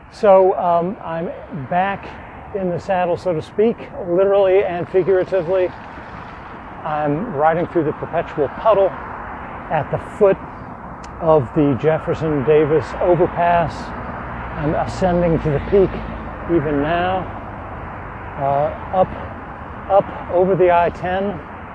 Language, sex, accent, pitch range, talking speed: English, male, American, 150-185 Hz, 110 wpm